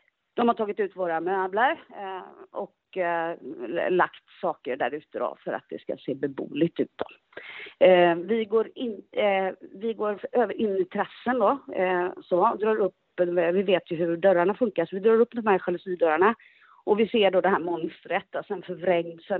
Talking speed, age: 190 wpm, 40-59